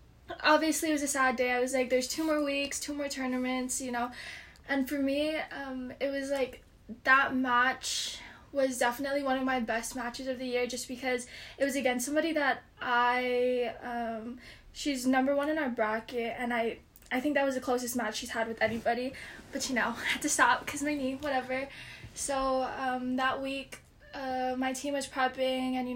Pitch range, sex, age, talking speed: 250-280 Hz, female, 10-29, 200 wpm